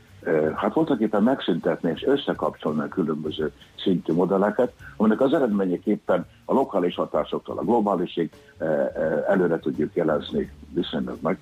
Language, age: Hungarian, 60-79